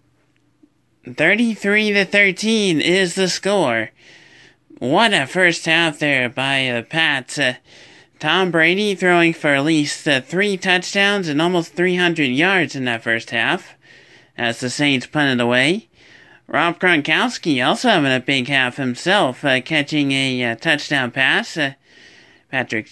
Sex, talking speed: male, 140 wpm